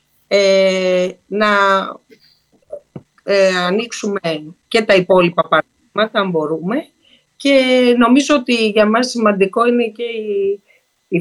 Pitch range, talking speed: 175-220 Hz, 105 wpm